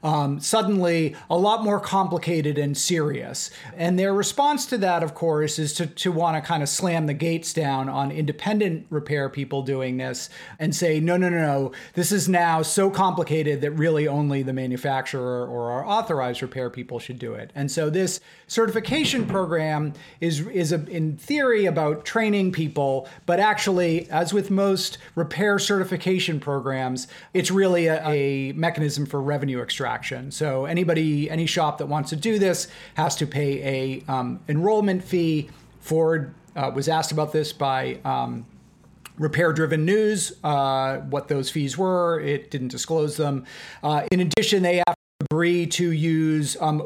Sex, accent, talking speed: male, American, 165 wpm